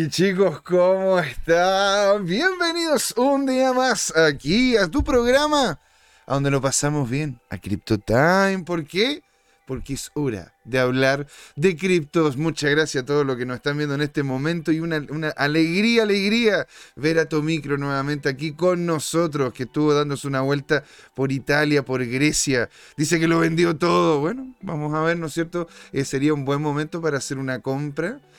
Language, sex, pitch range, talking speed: Spanish, male, 135-175 Hz, 175 wpm